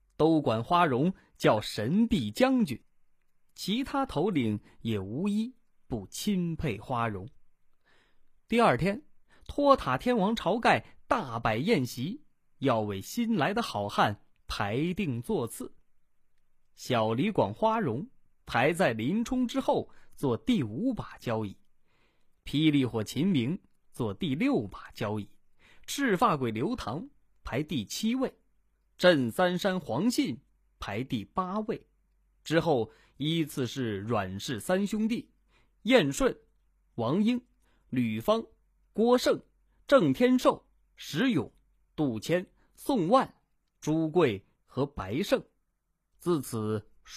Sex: male